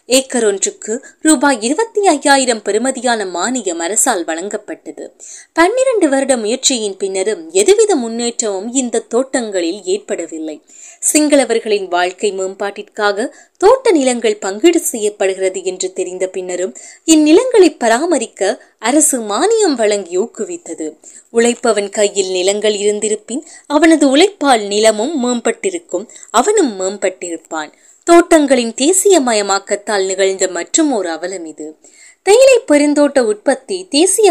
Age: 20-39